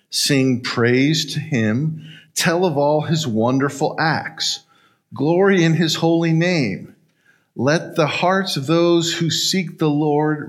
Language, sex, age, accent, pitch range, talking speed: English, male, 50-69, American, 115-170 Hz, 135 wpm